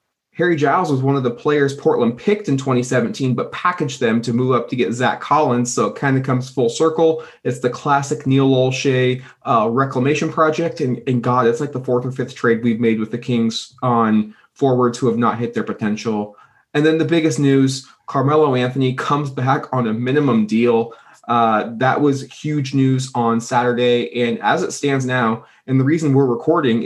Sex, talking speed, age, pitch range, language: male, 200 wpm, 20-39, 120-150 Hz, English